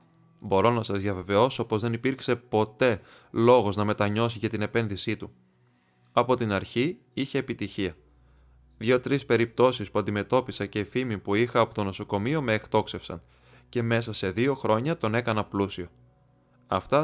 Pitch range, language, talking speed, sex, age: 100-125 Hz, Greek, 150 wpm, male, 20-39